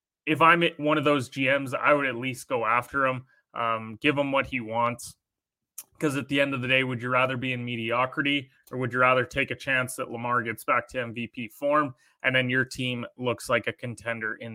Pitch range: 120-140 Hz